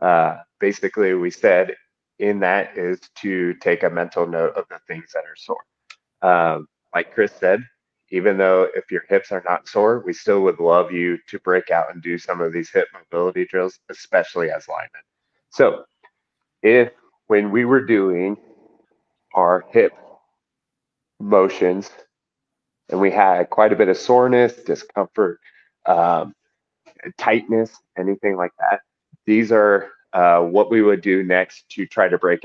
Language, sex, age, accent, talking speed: English, male, 30-49, American, 155 wpm